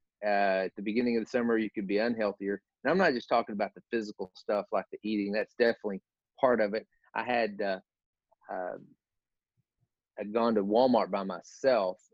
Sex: male